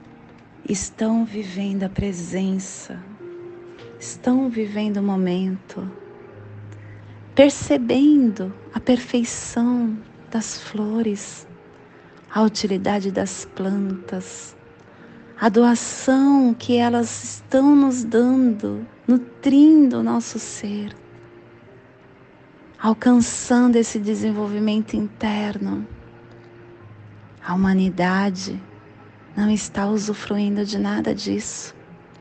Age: 40-59